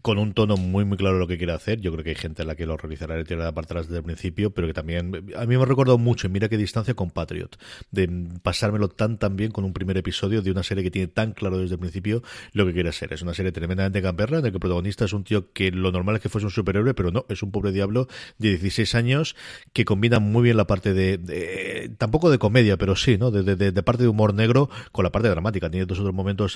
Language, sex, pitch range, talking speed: Spanish, male, 95-120 Hz, 280 wpm